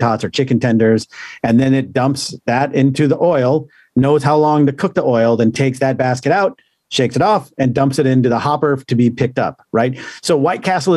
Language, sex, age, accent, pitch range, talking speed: English, male, 40-59, American, 120-150 Hz, 225 wpm